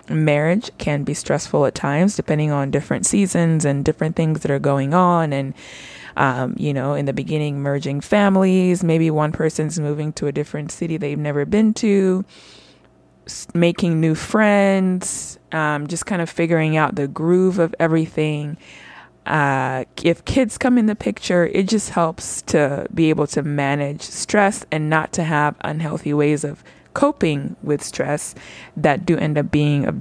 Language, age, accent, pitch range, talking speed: English, 20-39, American, 150-185 Hz, 165 wpm